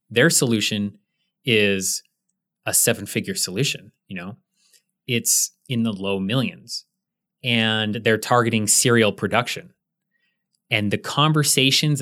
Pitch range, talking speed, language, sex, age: 105-150 Hz, 105 wpm, English, male, 20-39